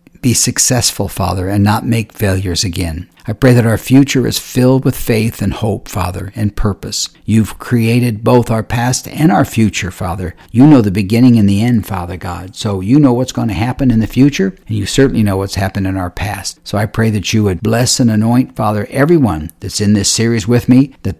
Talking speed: 220 wpm